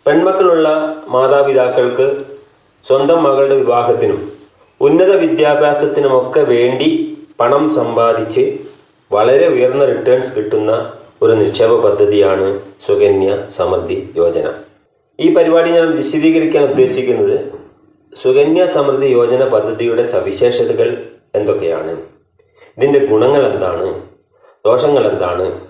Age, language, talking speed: 30-49, Malayalam, 80 wpm